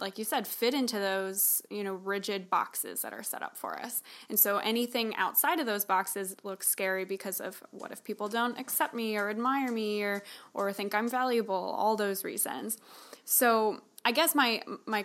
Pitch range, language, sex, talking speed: 200-235 Hz, English, female, 195 wpm